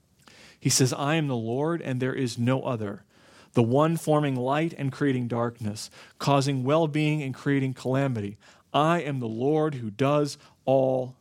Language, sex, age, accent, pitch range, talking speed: English, male, 40-59, American, 120-145 Hz, 160 wpm